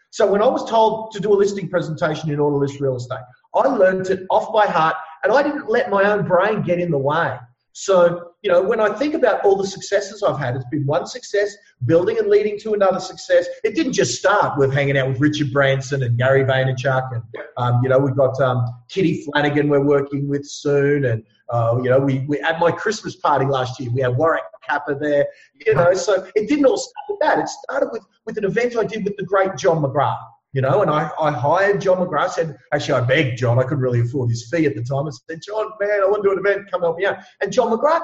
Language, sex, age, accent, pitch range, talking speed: English, male, 30-49, Australian, 135-210 Hz, 250 wpm